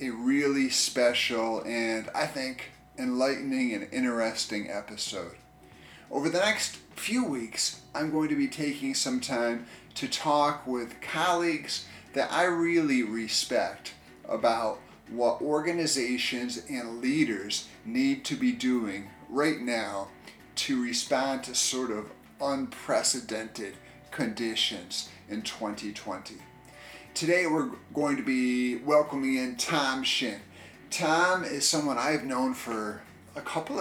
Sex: male